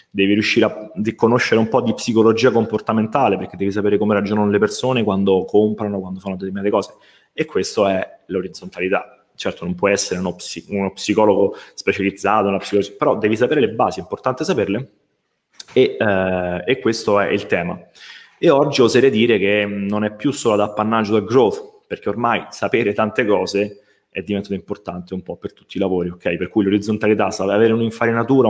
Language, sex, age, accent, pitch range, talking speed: Italian, male, 20-39, native, 95-110 Hz, 180 wpm